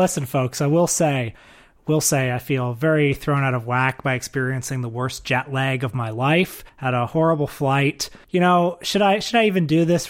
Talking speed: 215 wpm